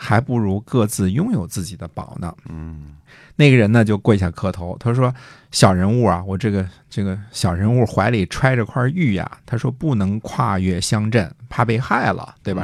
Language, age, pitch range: Chinese, 50-69, 95-125 Hz